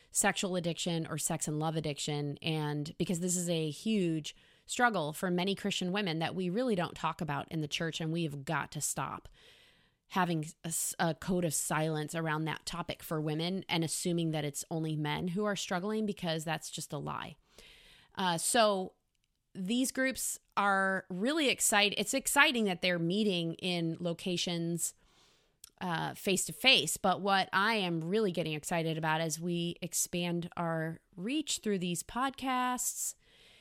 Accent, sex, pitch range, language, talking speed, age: American, female, 165-205 Hz, English, 160 wpm, 20-39